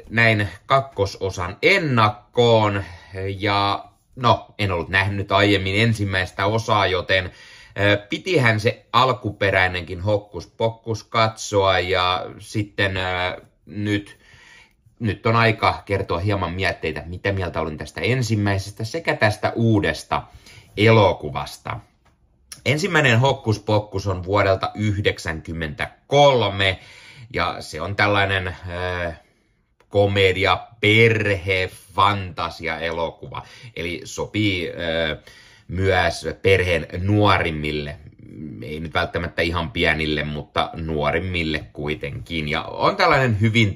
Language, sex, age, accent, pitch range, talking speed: Finnish, male, 30-49, native, 80-105 Hz, 95 wpm